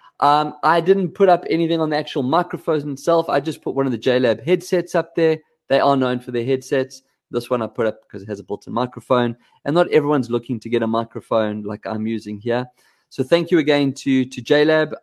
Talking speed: 230 wpm